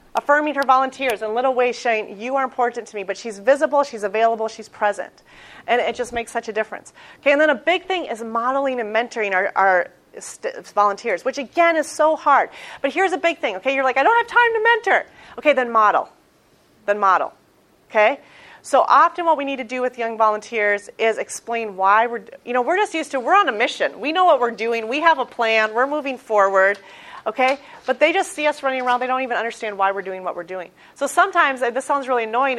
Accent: American